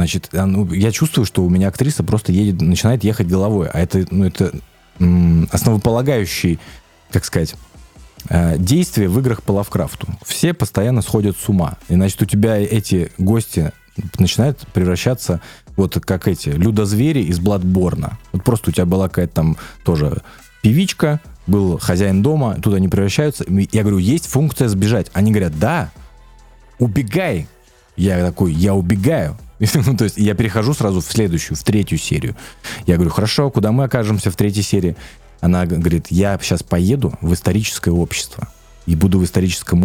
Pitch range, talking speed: 90-115 Hz, 155 wpm